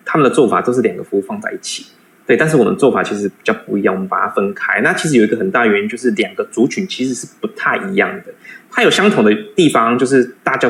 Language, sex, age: Chinese, male, 20-39